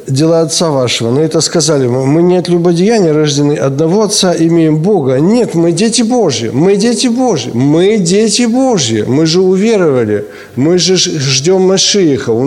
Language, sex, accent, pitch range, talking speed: Ukrainian, male, native, 115-180 Hz, 160 wpm